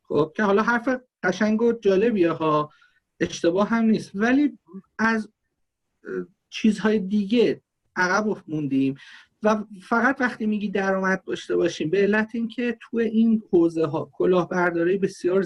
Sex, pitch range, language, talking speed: male, 150-210 Hz, Persian, 130 wpm